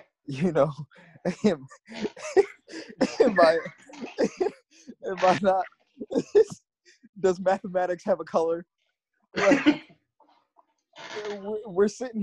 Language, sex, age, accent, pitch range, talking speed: English, male, 20-39, American, 115-165 Hz, 80 wpm